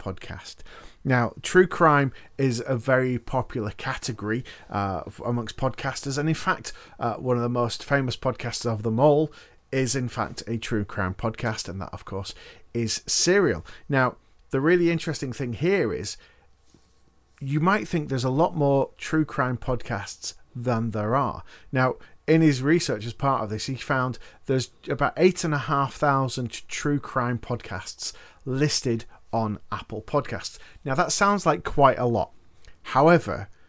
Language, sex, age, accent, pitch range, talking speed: English, male, 40-59, British, 120-145 Hz, 160 wpm